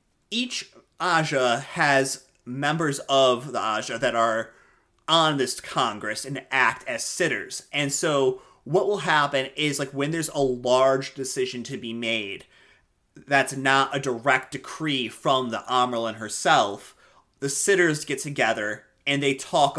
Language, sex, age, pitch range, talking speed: English, male, 30-49, 110-140 Hz, 145 wpm